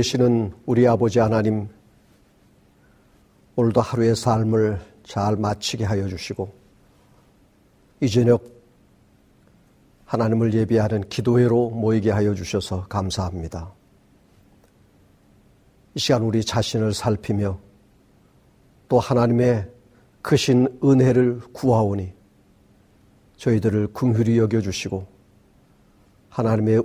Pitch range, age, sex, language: 100-125 Hz, 50-69, male, Korean